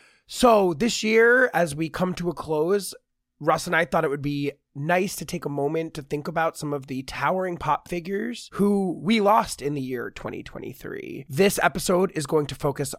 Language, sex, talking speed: English, male, 200 wpm